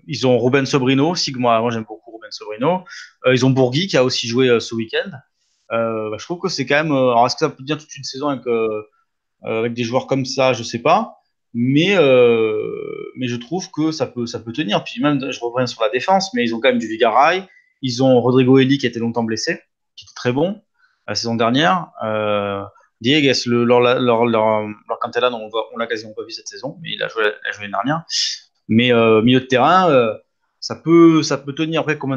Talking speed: 245 wpm